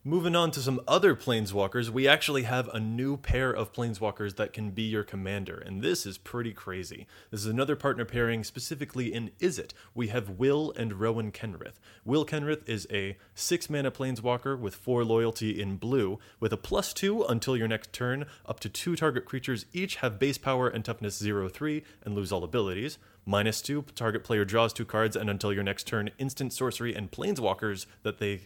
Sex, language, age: male, English, 20-39